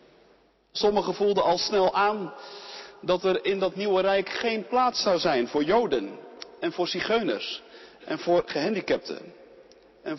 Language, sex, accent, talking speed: Dutch, male, Dutch, 140 wpm